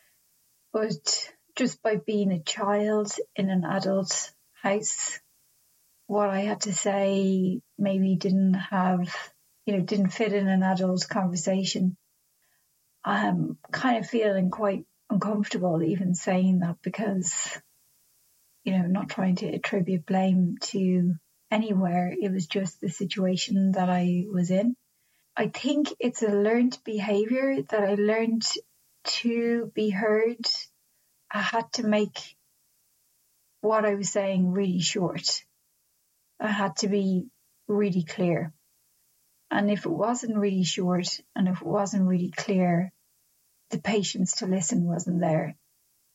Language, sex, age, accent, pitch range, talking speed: English, female, 30-49, British, 180-210 Hz, 130 wpm